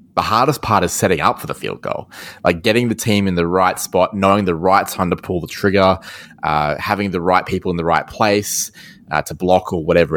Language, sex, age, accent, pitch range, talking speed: English, male, 20-39, Australian, 85-105 Hz, 235 wpm